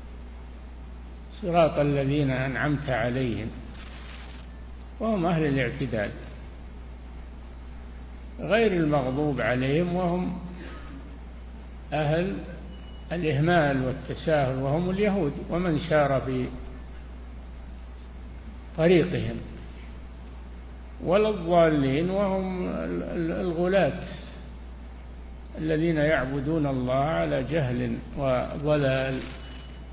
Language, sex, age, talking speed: Arabic, male, 60-79, 60 wpm